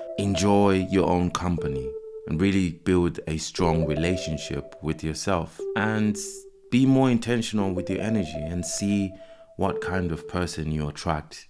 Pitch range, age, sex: 75-95 Hz, 30-49, male